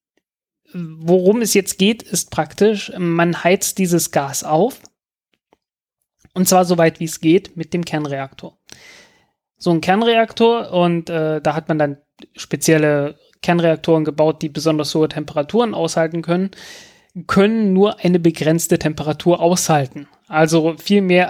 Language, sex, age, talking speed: German, male, 30-49, 135 wpm